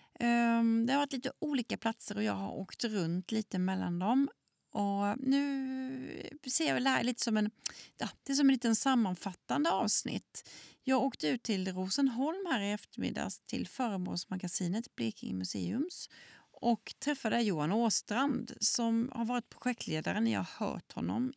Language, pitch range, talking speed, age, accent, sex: Swedish, 200-270 Hz, 150 wpm, 30-49, native, female